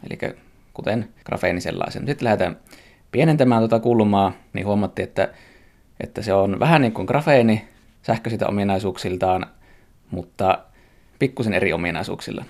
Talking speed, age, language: 125 wpm, 20-39, Finnish